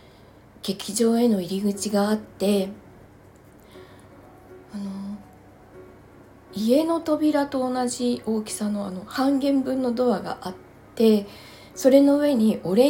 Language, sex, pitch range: Japanese, female, 190-245 Hz